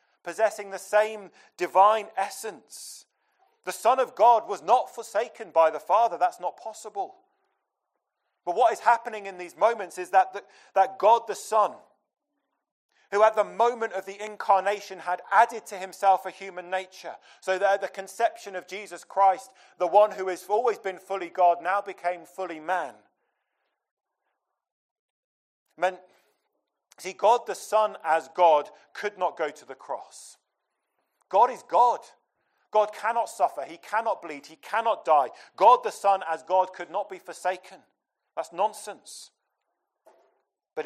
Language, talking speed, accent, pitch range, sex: English, 150 wpm, British, 170-215 Hz, male